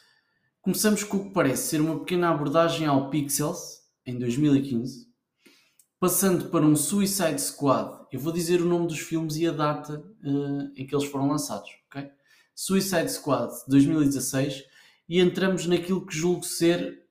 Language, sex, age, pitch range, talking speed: Portuguese, male, 20-39, 140-180 Hz, 150 wpm